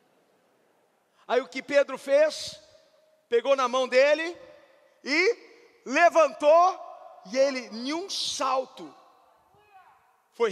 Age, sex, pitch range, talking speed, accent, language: 40-59, male, 300-415 Hz, 95 wpm, Brazilian, Portuguese